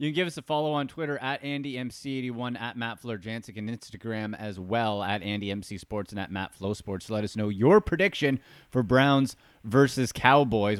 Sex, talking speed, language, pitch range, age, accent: male, 205 wpm, English, 115-145 Hz, 30-49, American